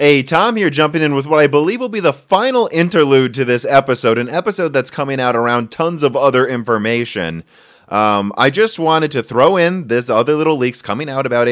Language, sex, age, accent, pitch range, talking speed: English, male, 30-49, American, 110-145 Hz, 215 wpm